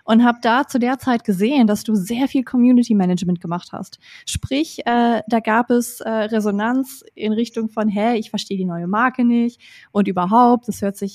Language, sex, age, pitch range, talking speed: German, female, 20-39, 210-245 Hz, 200 wpm